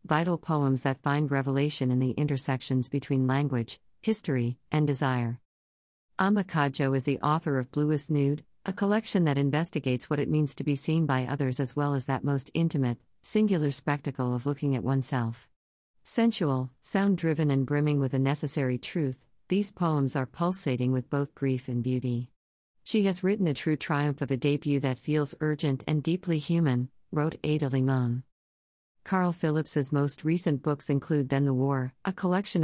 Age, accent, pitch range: 50-69, American, 130-160 Hz